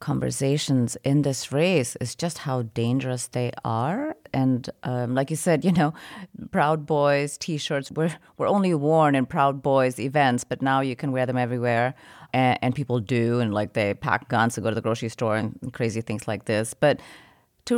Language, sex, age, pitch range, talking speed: English, female, 30-49, 125-160 Hz, 195 wpm